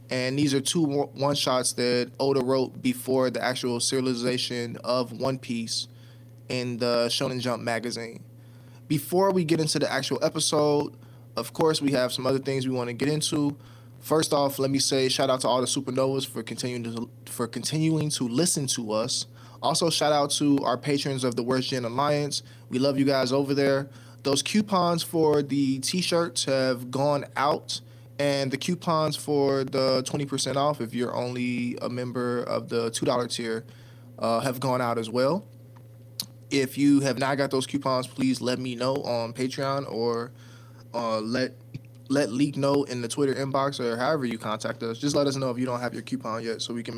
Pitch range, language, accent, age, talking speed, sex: 120-140 Hz, English, American, 20-39, 185 wpm, male